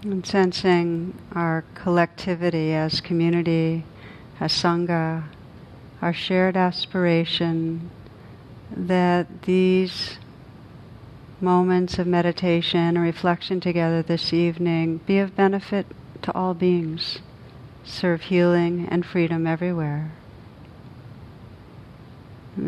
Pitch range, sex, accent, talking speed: 160-180 Hz, female, American, 85 wpm